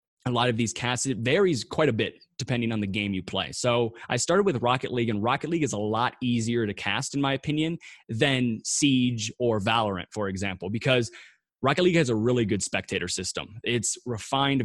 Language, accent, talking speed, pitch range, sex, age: English, American, 210 wpm, 110-135 Hz, male, 20-39